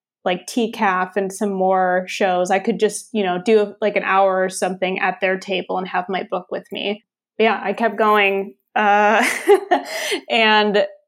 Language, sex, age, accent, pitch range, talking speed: English, female, 20-39, American, 190-225 Hz, 175 wpm